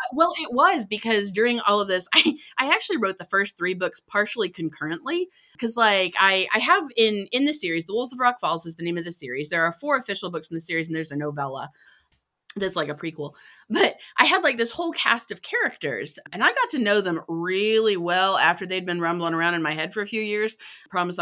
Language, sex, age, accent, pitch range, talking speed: English, female, 30-49, American, 165-225 Hz, 240 wpm